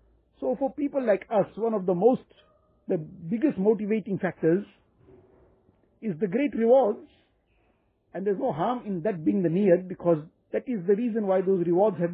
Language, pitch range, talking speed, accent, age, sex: English, 175-215 Hz, 175 wpm, Indian, 50-69, male